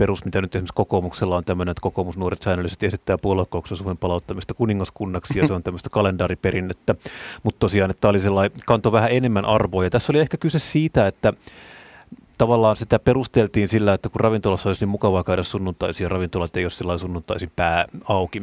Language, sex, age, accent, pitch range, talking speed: Finnish, male, 30-49, native, 95-120 Hz, 180 wpm